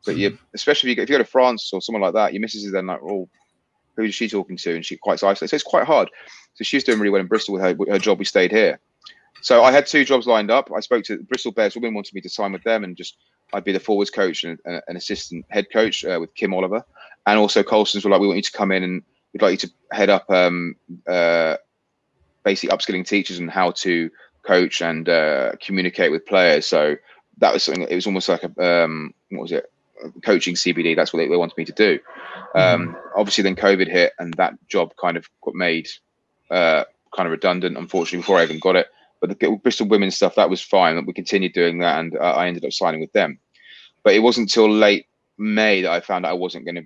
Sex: male